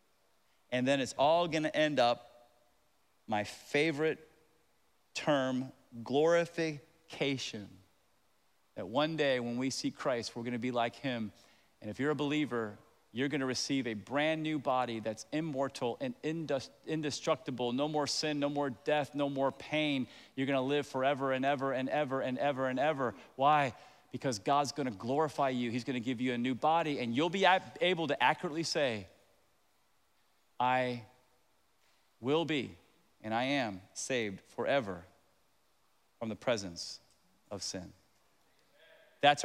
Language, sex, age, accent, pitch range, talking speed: English, male, 40-59, American, 125-155 Hz, 145 wpm